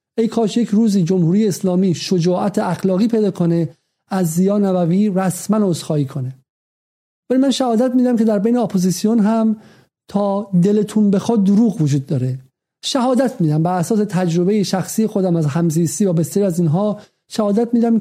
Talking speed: 155 wpm